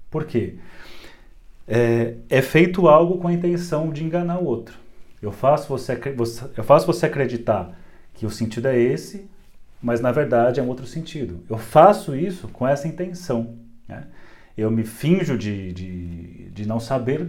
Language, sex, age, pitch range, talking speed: Portuguese, male, 40-59, 115-160 Hz, 165 wpm